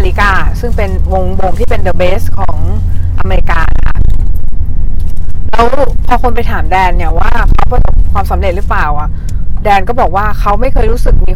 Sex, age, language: female, 20-39, Thai